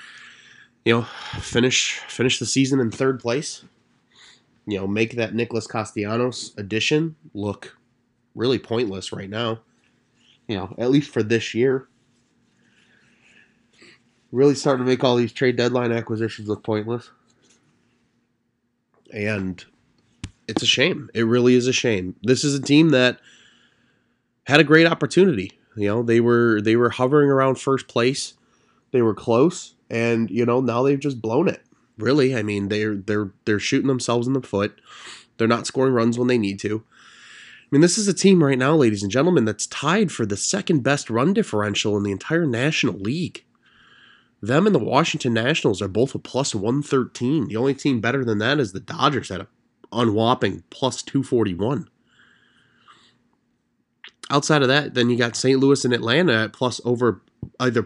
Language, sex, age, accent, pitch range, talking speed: English, male, 20-39, American, 110-135 Hz, 165 wpm